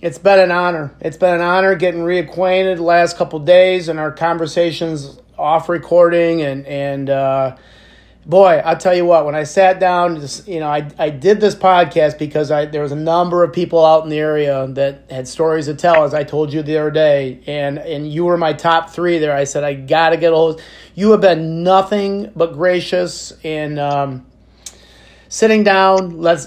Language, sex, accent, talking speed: English, male, American, 200 wpm